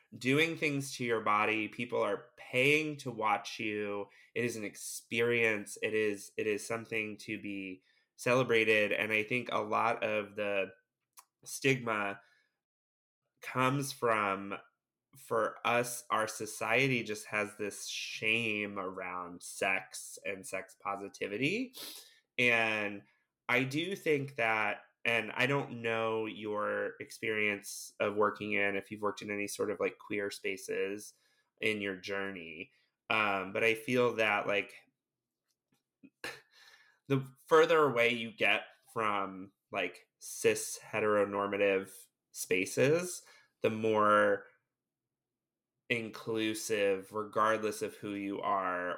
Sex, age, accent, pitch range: male, 20-39, American, 100-120 Hz